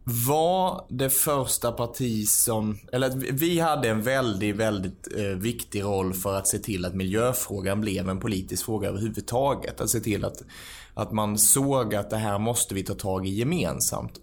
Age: 20-39